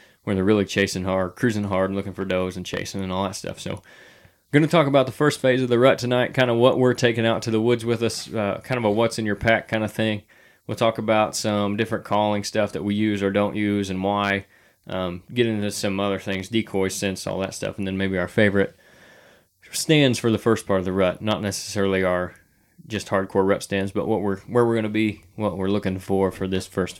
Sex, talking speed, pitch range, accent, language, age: male, 250 wpm, 95-115 Hz, American, English, 20-39